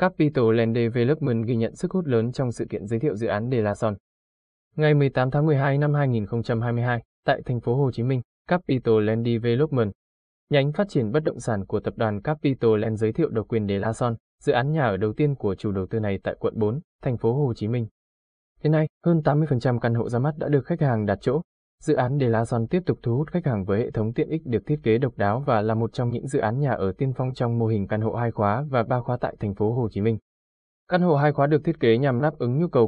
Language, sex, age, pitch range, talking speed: Vietnamese, male, 20-39, 110-145 Hz, 265 wpm